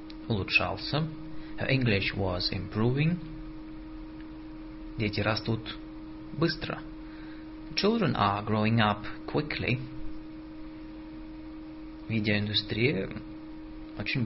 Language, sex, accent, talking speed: Russian, male, native, 65 wpm